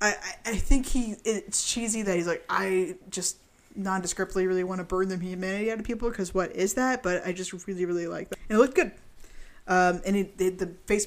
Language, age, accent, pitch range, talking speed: English, 20-39, American, 190-260 Hz, 230 wpm